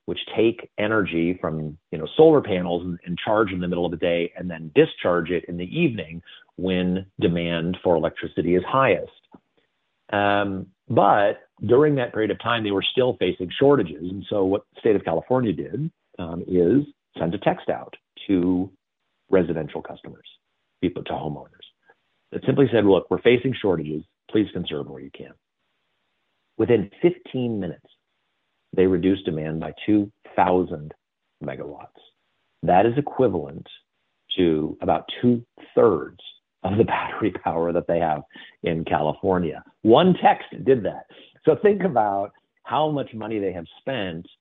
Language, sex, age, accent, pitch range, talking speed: English, male, 50-69, American, 85-120 Hz, 145 wpm